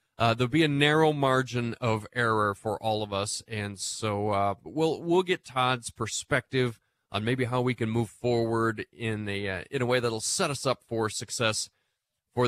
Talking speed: 190 wpm